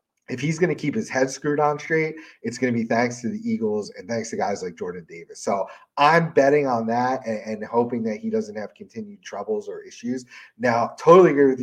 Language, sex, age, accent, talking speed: English, male, 30-49, American, 230 wpm